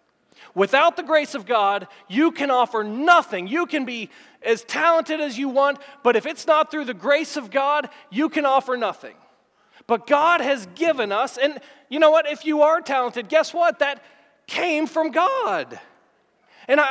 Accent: American